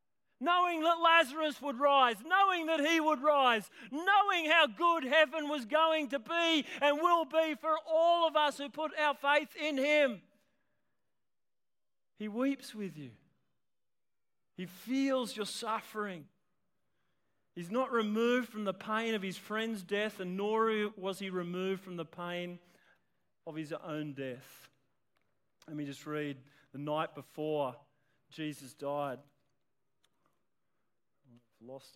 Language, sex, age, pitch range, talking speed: English, male, 40-59, 165-240 Hz, 135 wpm